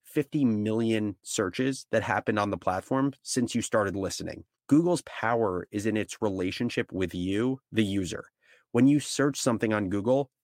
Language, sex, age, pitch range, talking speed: English, male, 30-49, 100-125 Hz, 160 wpm